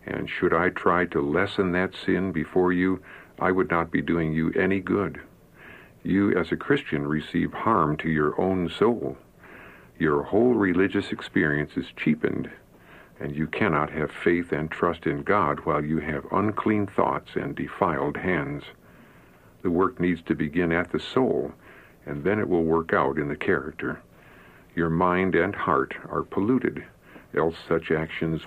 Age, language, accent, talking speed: 60-79, English, American, 160 wpm